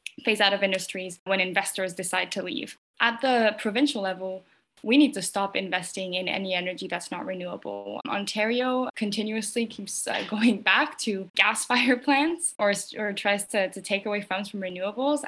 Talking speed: 175 wpm